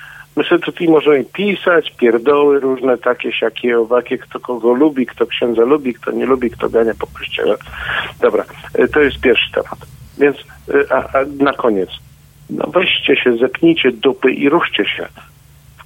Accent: native